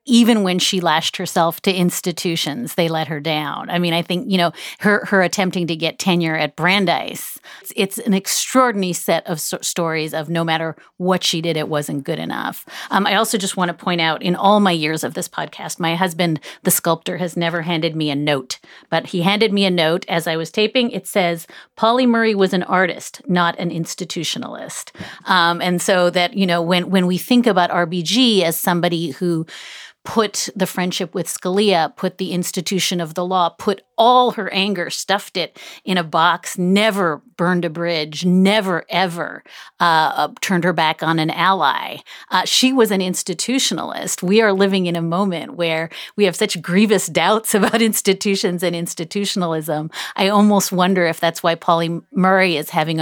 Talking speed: 185 wpm